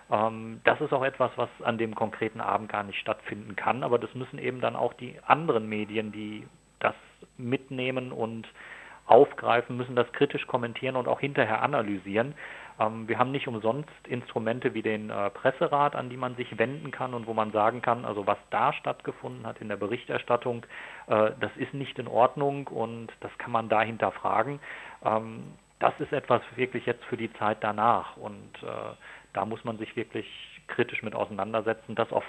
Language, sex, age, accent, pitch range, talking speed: German, male, 40-59, German, 110-130 Hz, 175 wpm